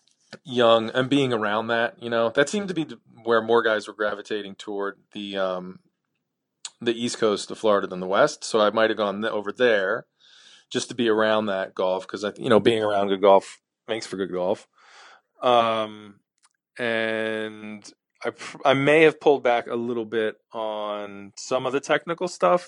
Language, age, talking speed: English, 20-39, 180 wpm